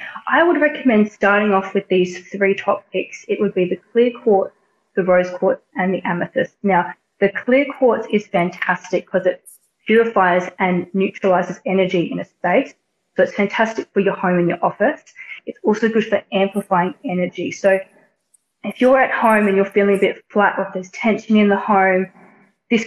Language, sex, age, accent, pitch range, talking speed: English, female, 20-39, Australian, 185-215 Hz, 185 wpm